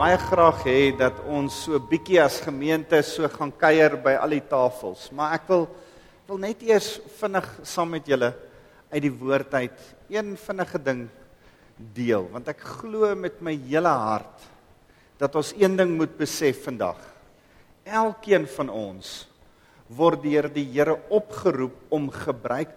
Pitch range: 130-180 Hz